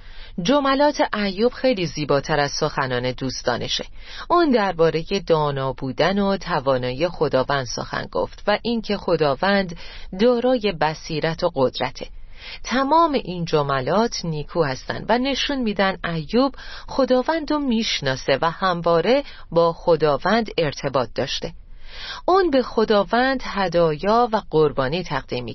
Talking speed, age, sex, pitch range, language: 120 wpm, 30-49, female, 160-245 Hz, Persian